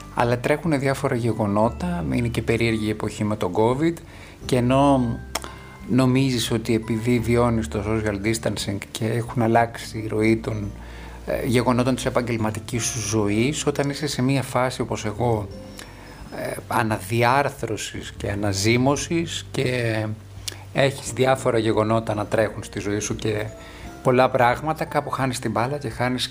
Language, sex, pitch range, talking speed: Greek, male, 105-130 Hz, 135 wpm